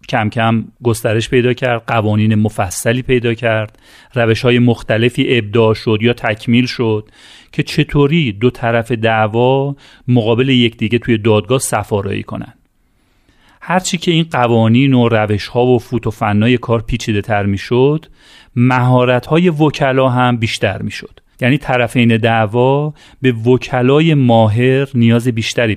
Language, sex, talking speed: Persian, male, 125 wpm